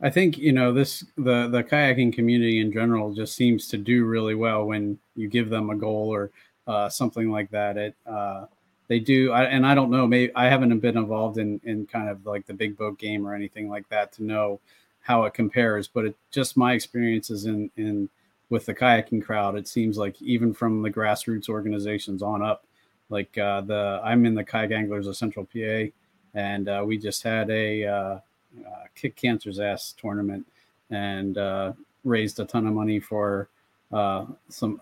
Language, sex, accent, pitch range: English, male, American, 105-115 Hz